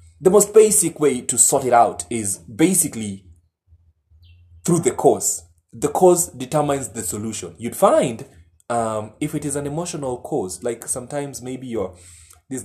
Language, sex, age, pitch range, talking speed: English, male, 20-39, 95-125 Hz, 145 wpm